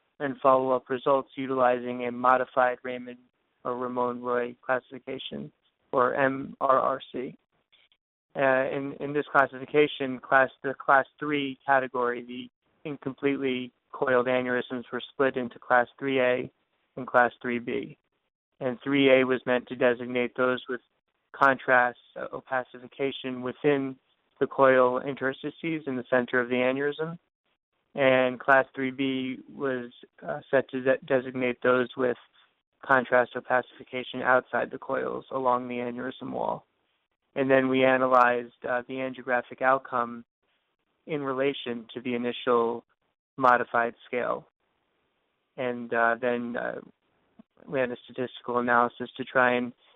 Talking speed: 125 wpm